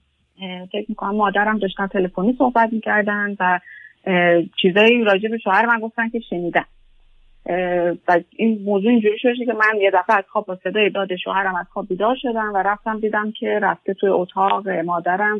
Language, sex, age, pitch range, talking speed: Persian, female, 30-49, 185-230 Hz, 170 wpm